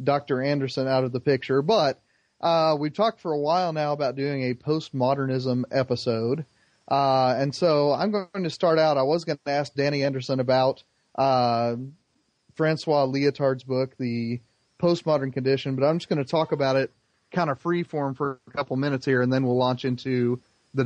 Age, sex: 30-49, male